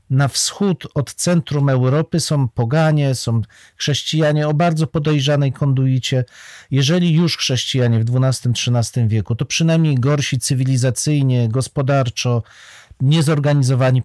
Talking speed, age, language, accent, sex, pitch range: 105 wpm, 40-59, Polish, native, male, 130-165 Hz